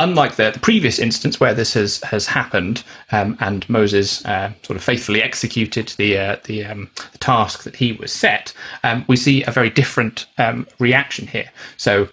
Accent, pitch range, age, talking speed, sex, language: British, 105-125 Hz, 30-49, 190 wpm, male, English